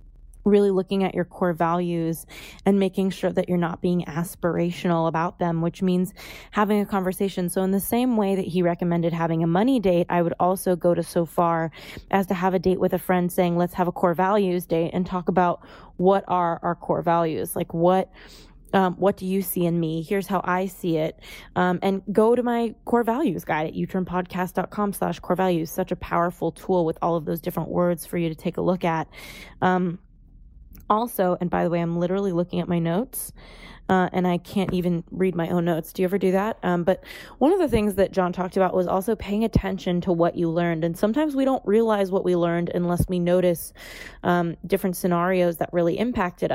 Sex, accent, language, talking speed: female, American, English, 215 wpm